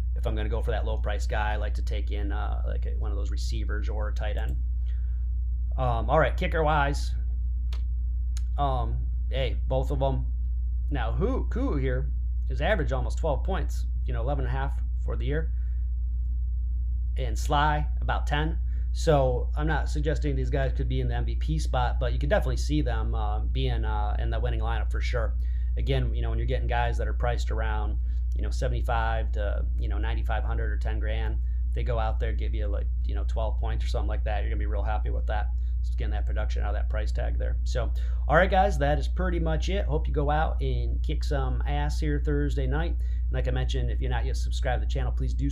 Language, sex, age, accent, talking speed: English, male, 30-49, American, 225 wpm